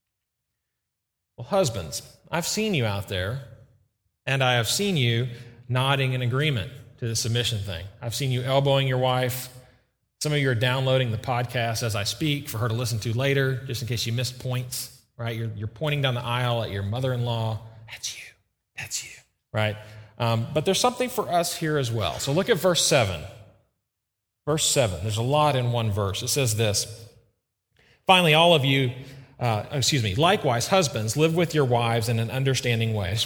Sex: male